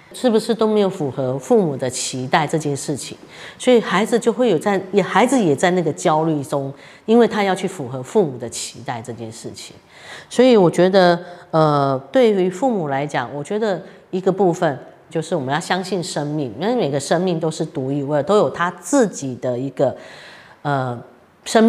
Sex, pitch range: female, 140-195 Hz